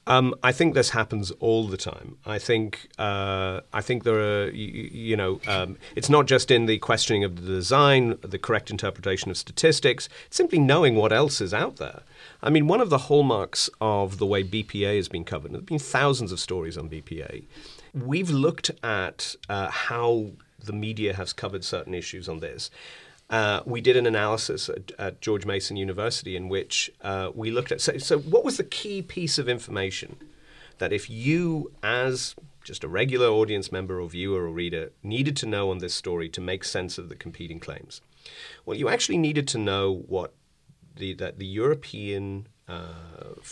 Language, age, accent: English, 30-49, British